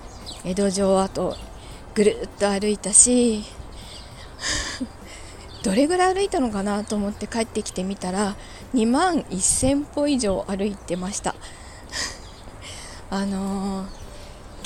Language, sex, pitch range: Japanese, female, 195-250 Hz